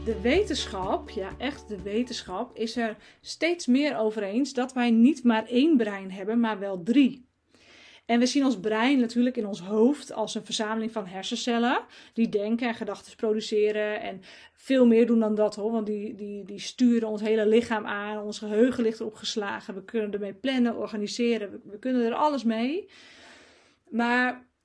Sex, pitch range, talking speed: female, 215-270 Hz, 180 wpm